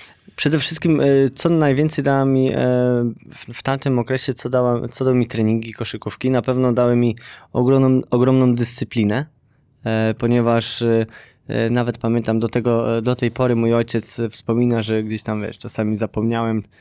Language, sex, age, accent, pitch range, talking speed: Polish, male, 20-39, native, 115-130 Hz, 140 wpm